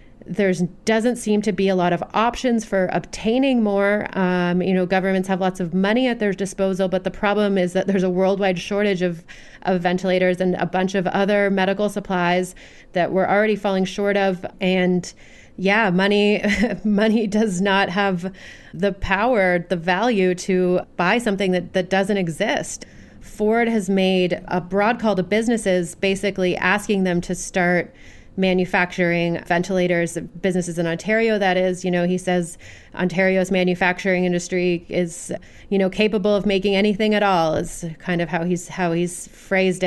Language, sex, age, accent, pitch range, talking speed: English, female, 30-49, American, 180-200 Hz, 165 wpm